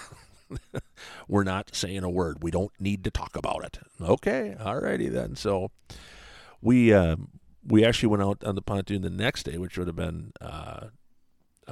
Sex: male